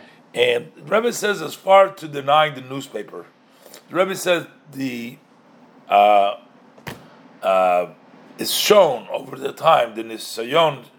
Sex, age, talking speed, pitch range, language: male, 50-69, 125 wpm, 115-180 Hz, English